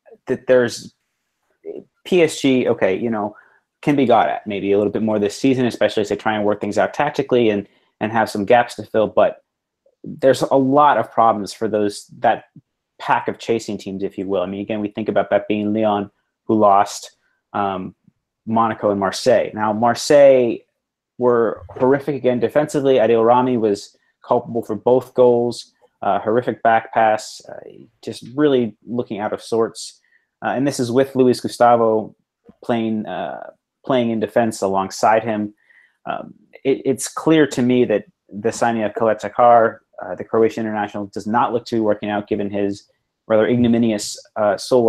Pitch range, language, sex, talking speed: 105-125 Hz, English, male, 175 wpm